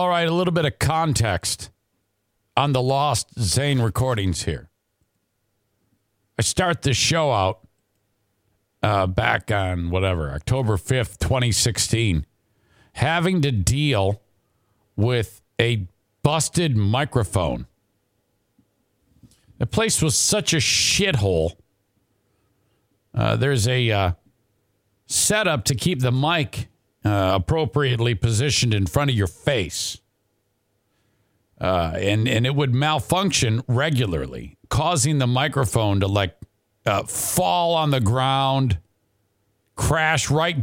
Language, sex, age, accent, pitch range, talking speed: English, male, 50-69, American, 100-135 Hz, 110 wpm